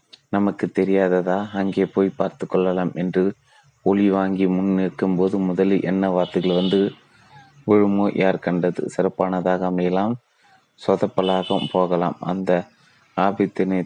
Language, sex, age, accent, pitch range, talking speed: Tamil, male, 30-49, native, 90-95 Hz, 110 wpm